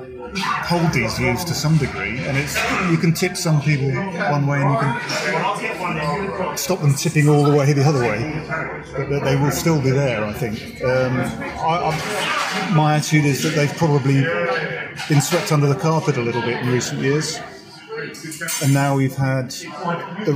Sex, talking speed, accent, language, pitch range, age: male, 175 wpm, British, English, 135-165 Hz, 30-49